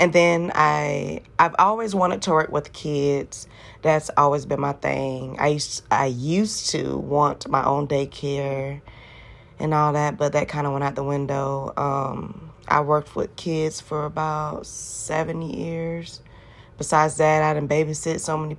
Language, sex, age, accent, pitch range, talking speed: English, female, 20-39, American, 115-160 Hz, 170 wpm